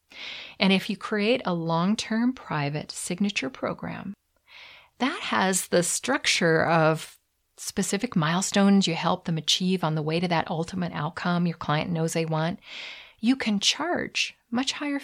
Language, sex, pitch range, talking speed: English, female, 165-215 Hz, 150 wpm